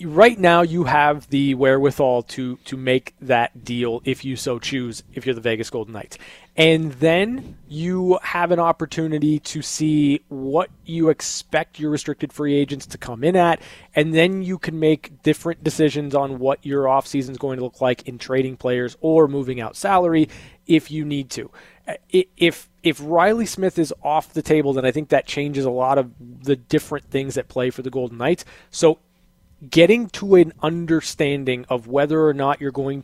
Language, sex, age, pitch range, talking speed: English, male, 20-39, 130-155 Hz, 185 wpm